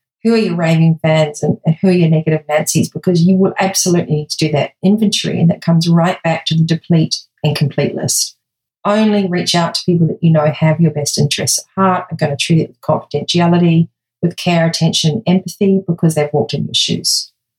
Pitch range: 155-185 Hz